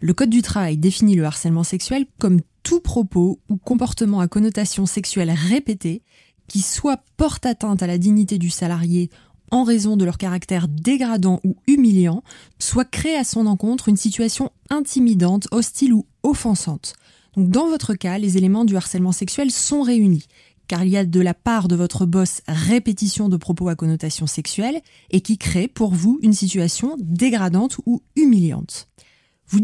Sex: female